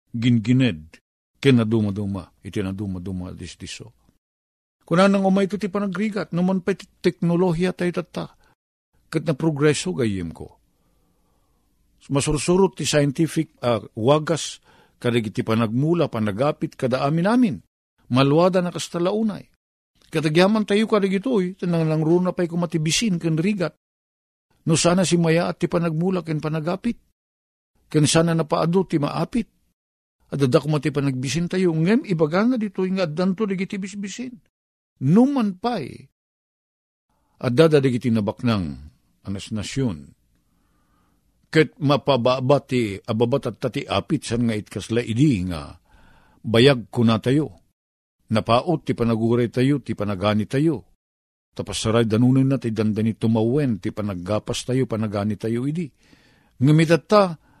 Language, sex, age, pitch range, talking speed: Filipino, male, 50-69, 110-175 Hz, 120 wpm